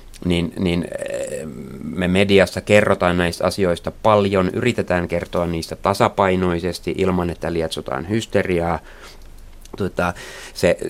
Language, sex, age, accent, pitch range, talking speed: Finnish, male, 30-49, native, 85-95 Hz, 100 wpm